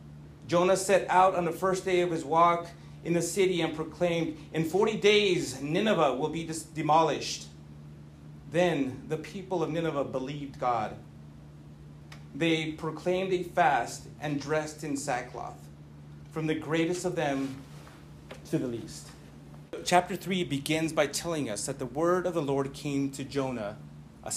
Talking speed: 150 wpm